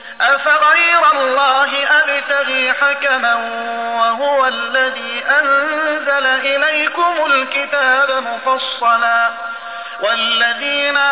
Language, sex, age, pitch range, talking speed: Arabic, male, 30-49, 265-290 Hz, 60 wpm